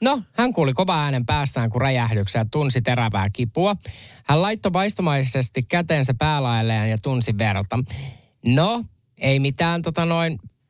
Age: 20-39